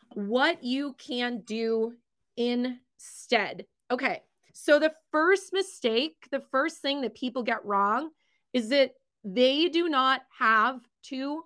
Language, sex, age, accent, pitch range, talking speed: English, female, 20-39, American, 235-280 Hz, 125 wpm